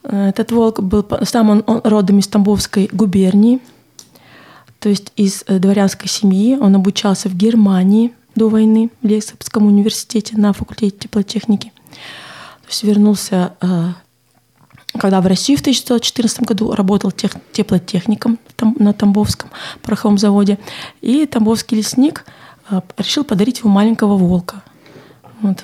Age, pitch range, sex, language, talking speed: 20-39, 200-230 Hz, female, Russian, 115 wpm